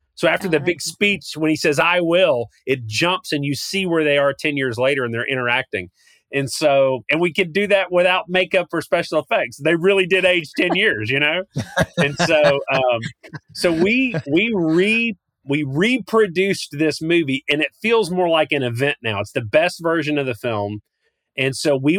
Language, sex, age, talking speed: English, male, 30-49, 200 wpm